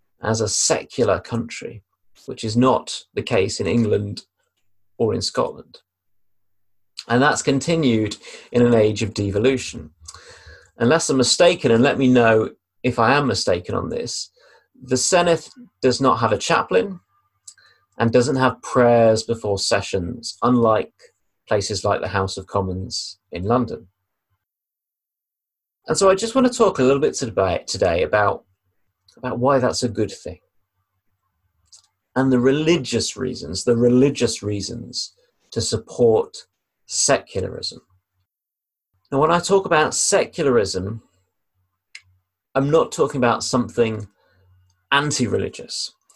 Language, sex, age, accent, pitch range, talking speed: English, male, 30-49, British, 95-125 Hz, 125 wpm